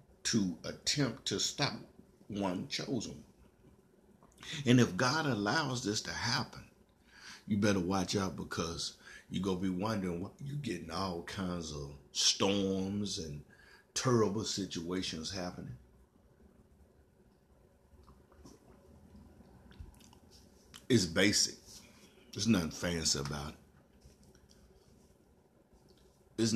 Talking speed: 95 wpm